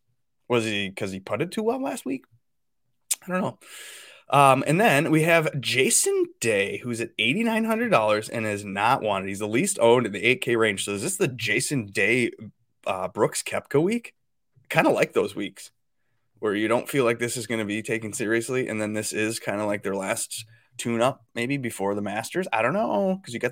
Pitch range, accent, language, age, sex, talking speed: 105-140 Hz, American, English, 20-39, male, 210 wpm